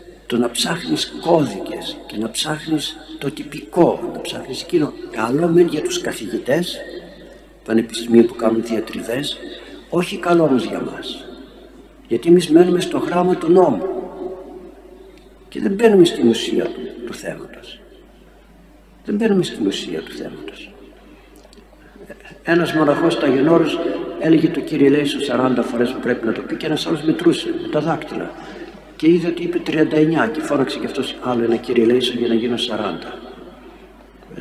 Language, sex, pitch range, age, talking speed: Greek, male, 115-185 Hz, 60-79, 145 wpm